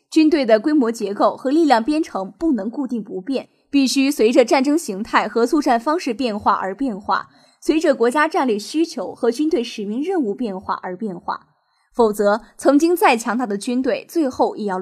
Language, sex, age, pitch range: Chinese, female, 20-39, 220-300 Hz